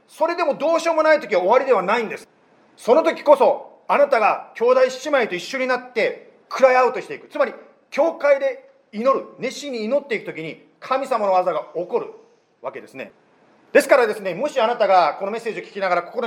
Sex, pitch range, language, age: male, 190-315 Hz, Japanese, 40-59